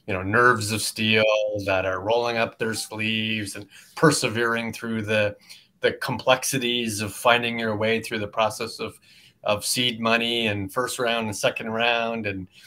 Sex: male